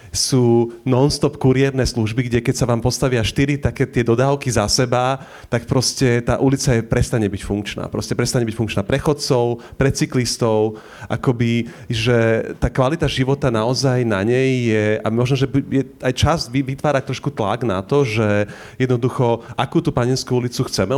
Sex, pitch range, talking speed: male, 115-135 Hz, 165 wpm